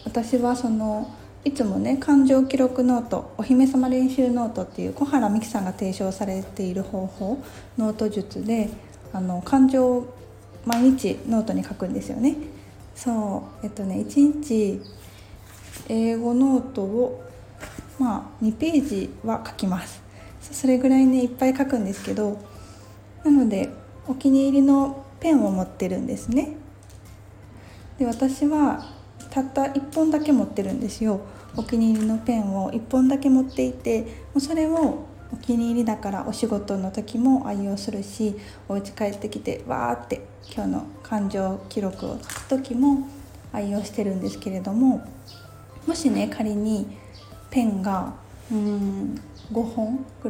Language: Japanese